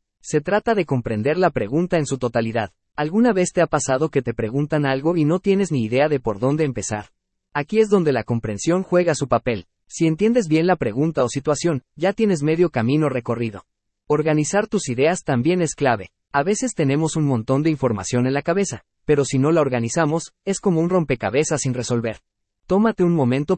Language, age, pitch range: Spanish, 30-49, 125-170 Hz